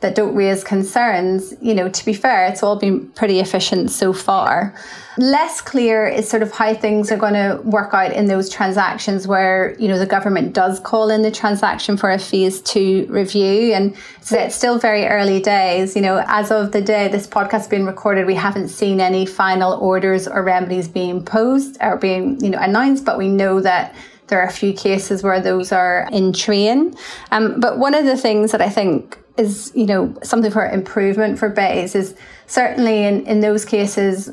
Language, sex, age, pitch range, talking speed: English, female, 30-49, 190-220 Hz, 200 wpm